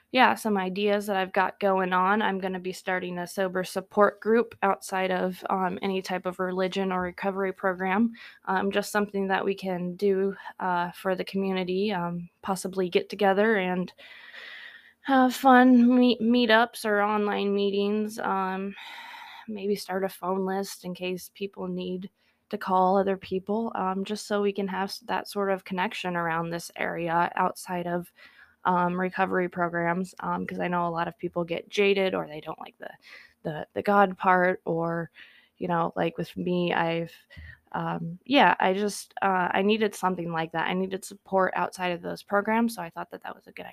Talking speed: 180 wpm